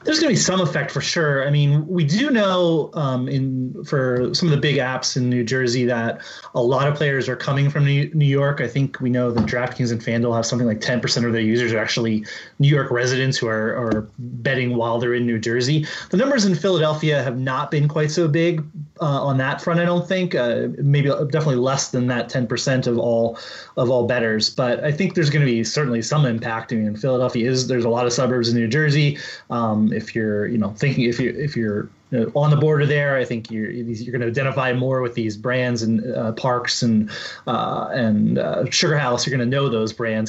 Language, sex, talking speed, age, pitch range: English, male, 230 wpm, 30-49, 115-145 Hz